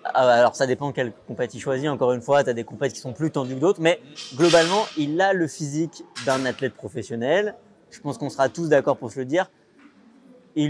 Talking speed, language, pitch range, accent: 225 wpm, French, 130-165 Hz, French